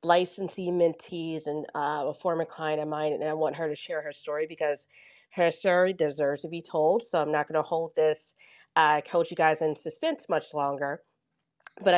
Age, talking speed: 30-49, 205 wpm